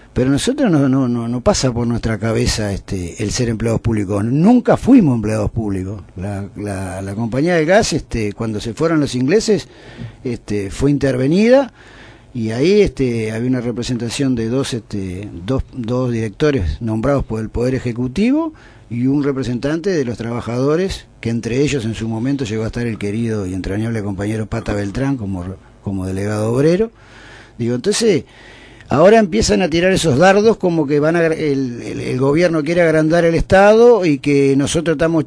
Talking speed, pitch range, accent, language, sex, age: 160 wpm, 115-160 Hz, Argentinian, Spanish, male, 50-69